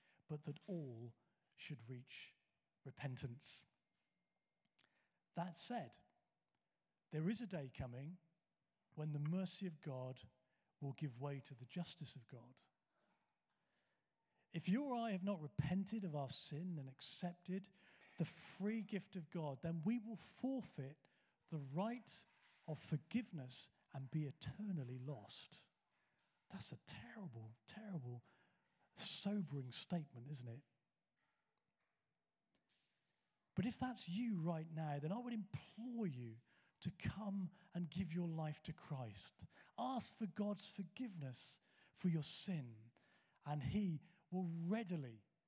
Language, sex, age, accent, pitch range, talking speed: English, male, 40-59, British, 140-190 Hz, 125 wpm